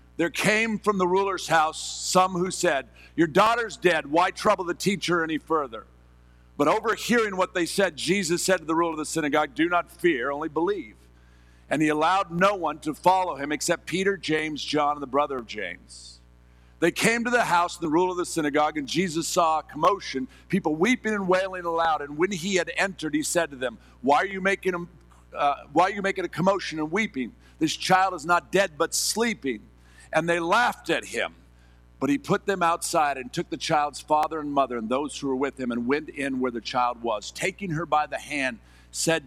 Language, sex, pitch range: English, male, 110-175 Hz